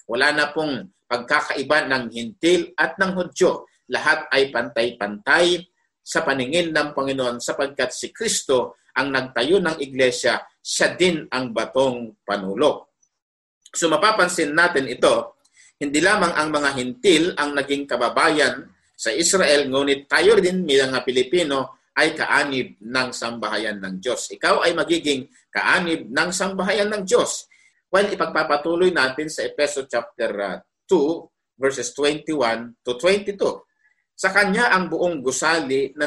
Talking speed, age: 130 wpm, 50-69